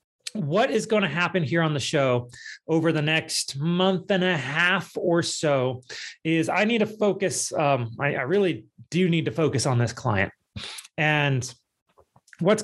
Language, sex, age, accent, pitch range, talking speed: English, male, 30-49, American, 135-185 Hz, 170 wpm